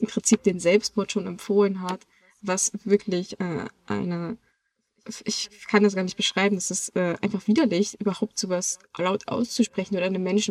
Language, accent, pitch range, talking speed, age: German, German, 185-215 Hz, 165 wpm, 20-39